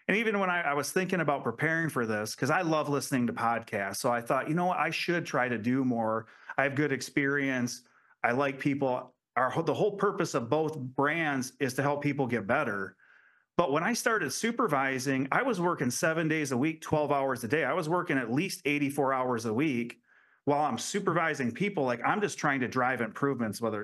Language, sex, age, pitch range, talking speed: English, male, 30-49, 130-160 Hz, 215 wpm